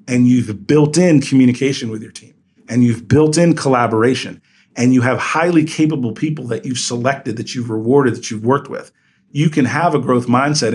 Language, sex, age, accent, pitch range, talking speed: English, male, 40-59, American, 120-145 Hz, 195 wpm